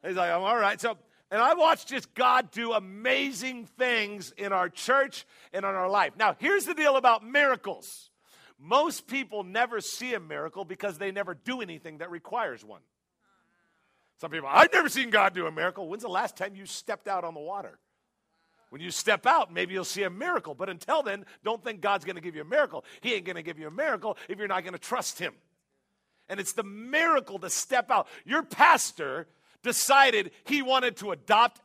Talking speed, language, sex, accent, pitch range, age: 205 wpm, English, male, American, 185-255 Hz, 50-69